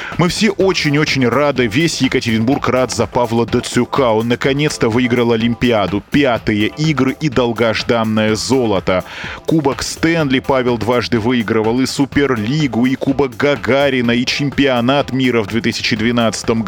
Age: 20-39